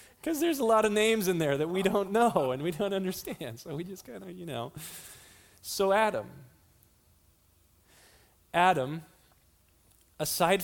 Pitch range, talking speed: 130-205 Hz, 150 wpm